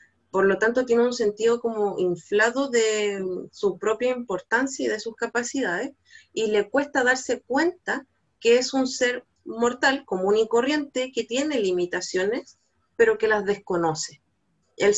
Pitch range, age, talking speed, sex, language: 190-250 Hz, 30-49, 150 wpm, female, Spanish